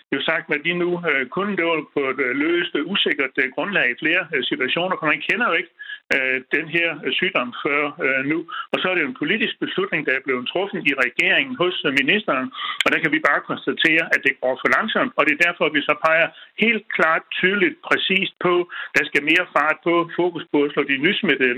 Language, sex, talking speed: Danish, male, 210 wpm